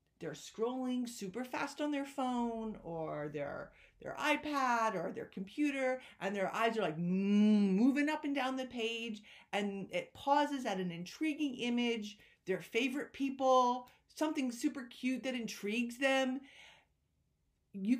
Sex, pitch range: female, 220-285 Hz